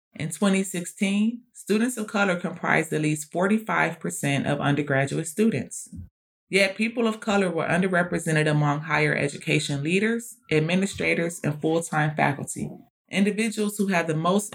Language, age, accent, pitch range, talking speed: English, 30-49, American, 150-200 Hz, 130 wpm